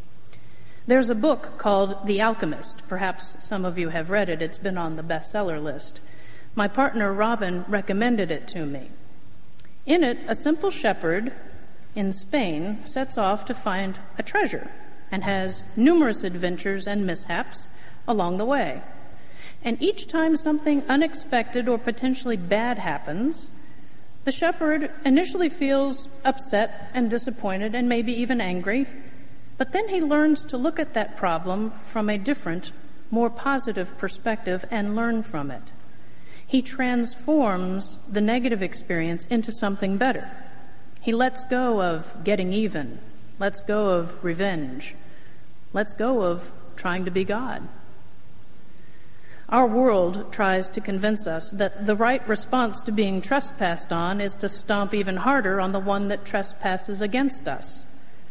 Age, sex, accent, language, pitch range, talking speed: 50-69, female, American, English, 190-255 Hz, 140 wpm